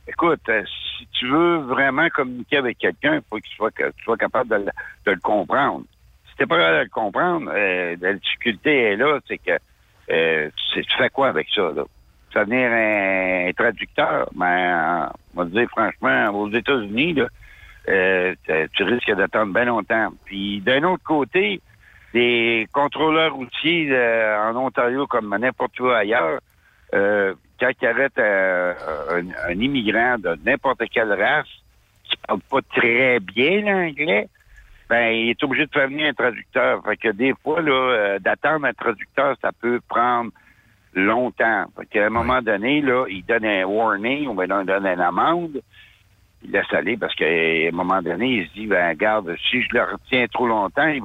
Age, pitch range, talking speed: 60-79, 95-135 Hz, 180 wpm